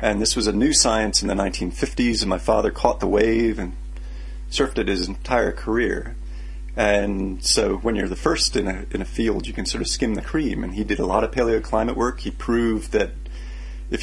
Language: English